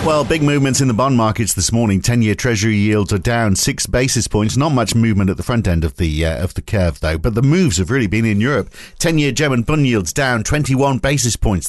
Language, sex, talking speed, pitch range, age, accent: English, male, 240 wpm, 100-130 Hz, 50-69, British